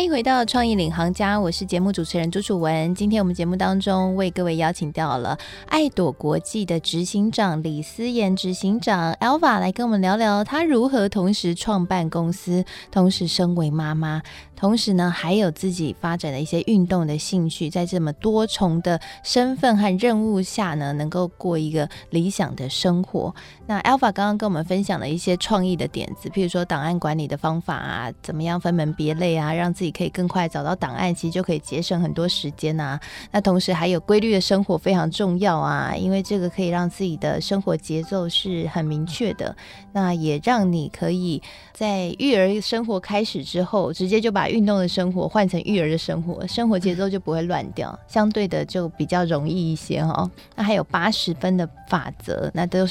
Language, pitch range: Chinese, 165-205 Hz